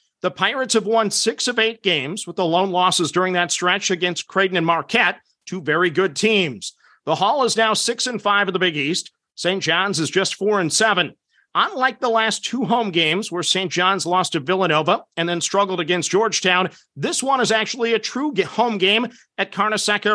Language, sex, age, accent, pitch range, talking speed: English, male, 50-69, American, 180-230 Hz, 205 wpm